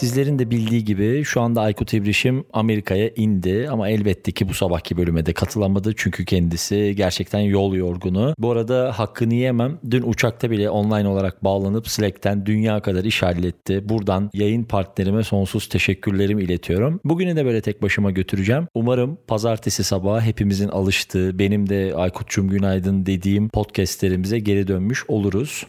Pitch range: 105-130 Hz